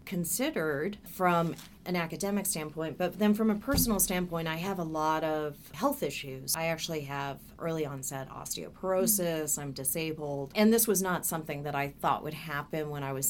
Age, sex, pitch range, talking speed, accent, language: 30-49, female, 150-190 Hz, 175 wpm, American, English